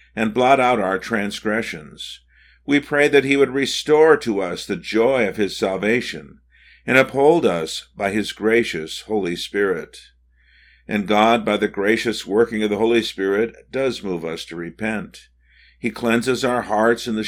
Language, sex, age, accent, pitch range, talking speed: English, male, 50-69, American, 95-125 Hz, 165 wpm